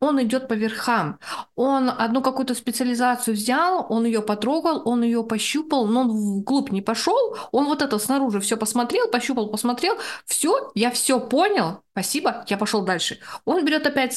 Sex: female